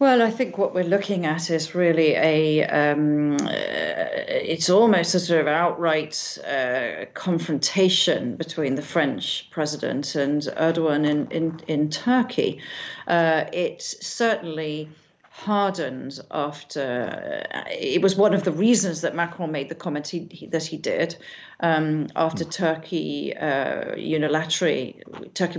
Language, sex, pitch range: English, female, 160-195 Hz